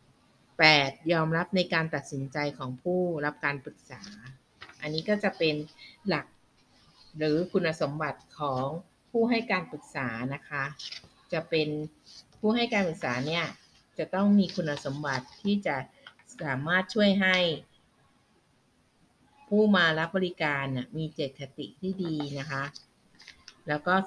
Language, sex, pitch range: Thai, female, 135-180 Hz